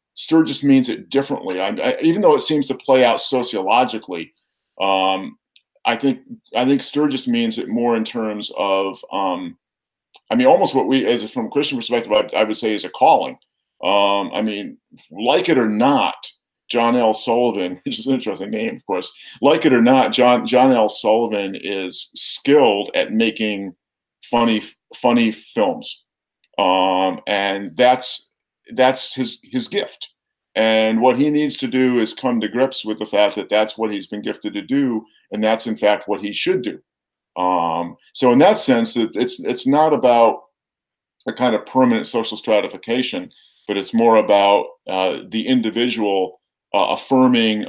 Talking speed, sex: 170 wpm, male